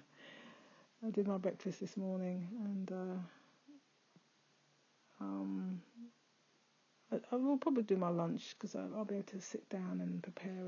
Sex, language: female, English